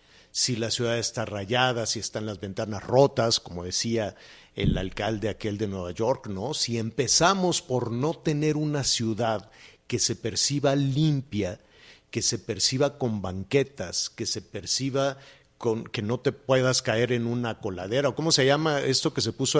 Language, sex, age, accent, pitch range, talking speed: Spanish, male, 50-69, Mexican, 115-140 Hz, 170 wpm